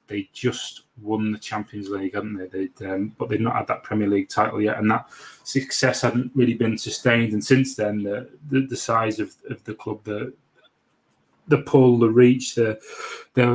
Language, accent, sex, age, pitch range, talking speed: English, British, male, 30-49, 105-120 Hz, 190 wpm